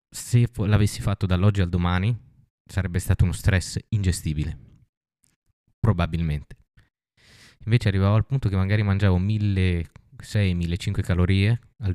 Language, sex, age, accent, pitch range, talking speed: Italian, male, 20-39, native, 90-110 Hz, 110 wpm